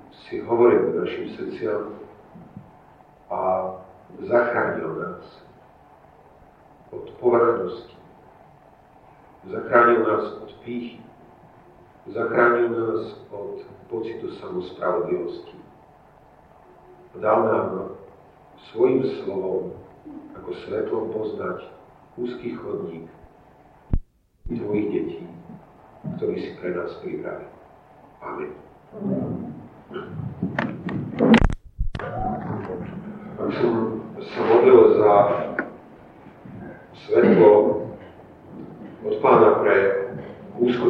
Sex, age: male, 50-69